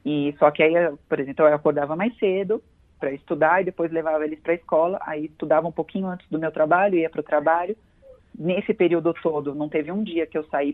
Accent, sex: Brazilian, female